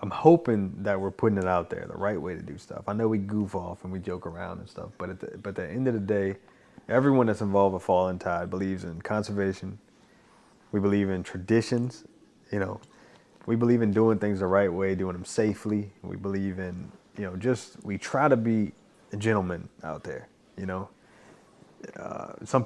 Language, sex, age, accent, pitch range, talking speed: English, male, 20-39, American, 95-115 Hz, 210 wpm